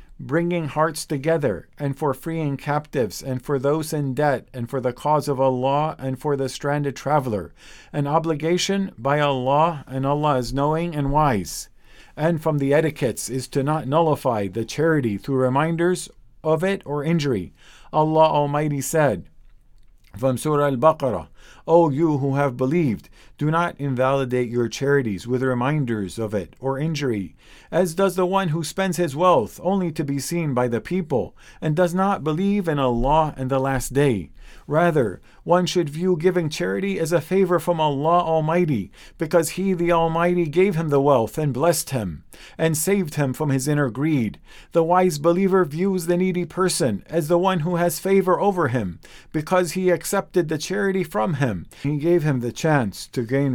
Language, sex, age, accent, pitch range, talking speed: English, male, 50-69, American, 130-165 Hz, 175 wpm